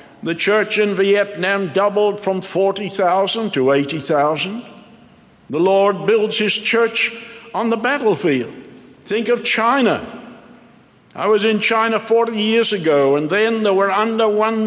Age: 60-79